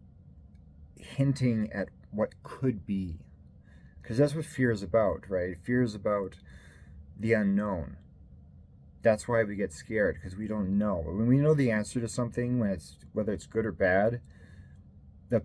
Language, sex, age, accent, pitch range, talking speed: English, male, 30-49, American, 80-105 Hz, 160 wpm